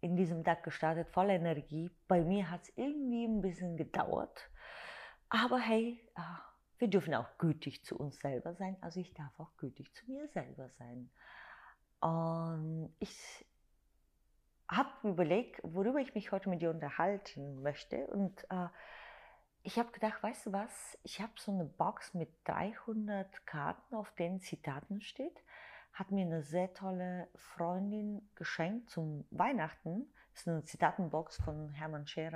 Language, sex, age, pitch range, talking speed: German, female, 30-49, 155-205 Hz, 145 wpm